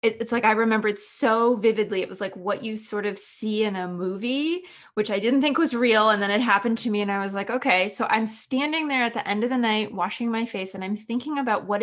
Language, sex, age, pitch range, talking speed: English, female, 20-39, 195-240 Hz, 270 wpm